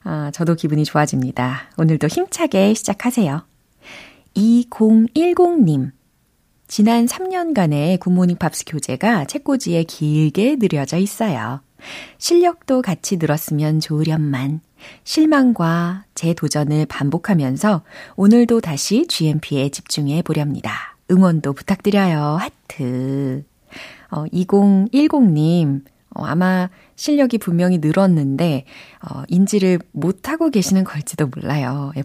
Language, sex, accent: Korean, female, native